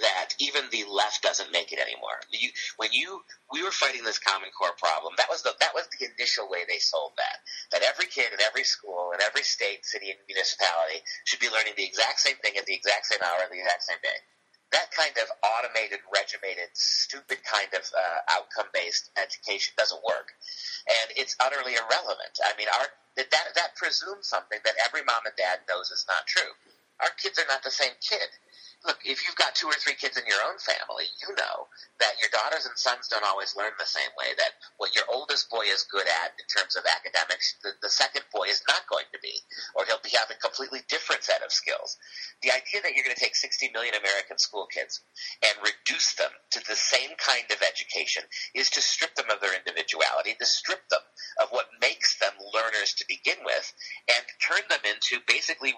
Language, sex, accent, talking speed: English, male, American, 215 wpm